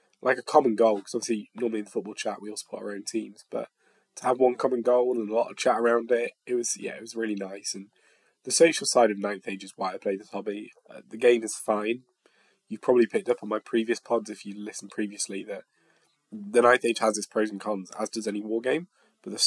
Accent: British